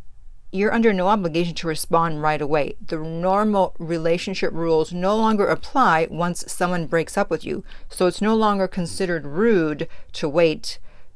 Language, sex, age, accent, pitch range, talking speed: English, female, 40-59, American, 160-195 Hz, 155 wpm